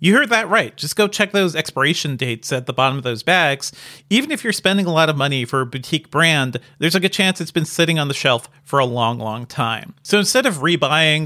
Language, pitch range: English, 140-180 Hz